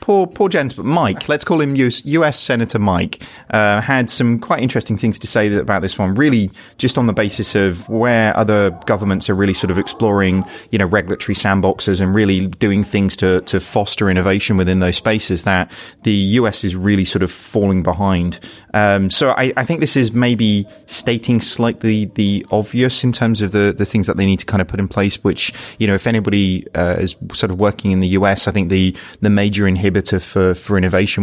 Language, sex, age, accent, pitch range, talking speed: English, male, 30-49, British, 95-110 Hz, 210 wpm